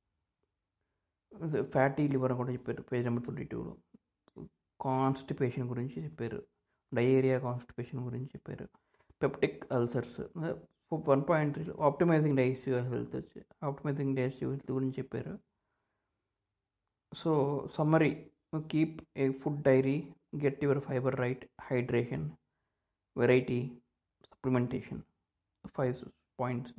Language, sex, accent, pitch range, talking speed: Telugu, male, native, 100-135 Hz, 100 wpm